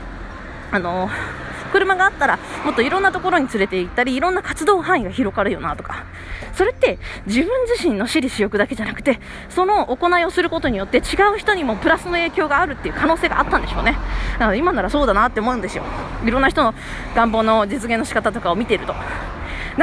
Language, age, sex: Japanese, 20-39, female